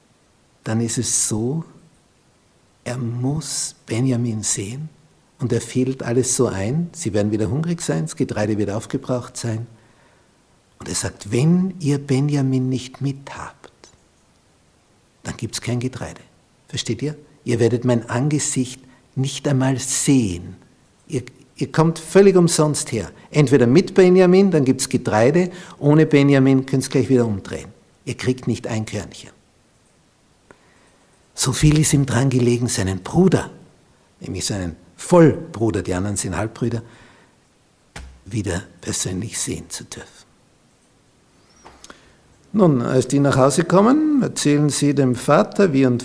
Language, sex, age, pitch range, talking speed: German, male, 60-79, 110-145 Hz, 135 wpm